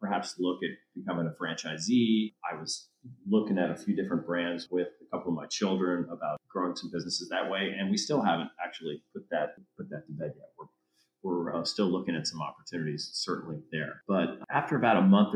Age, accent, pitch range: 40-59, American, 85-110 Hz